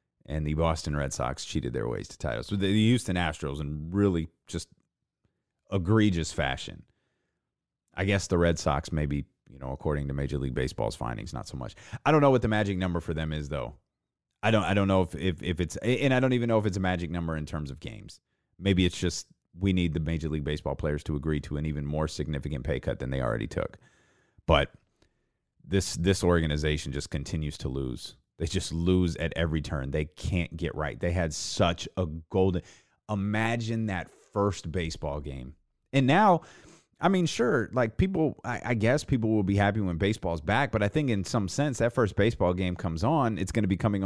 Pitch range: 75-100 Hz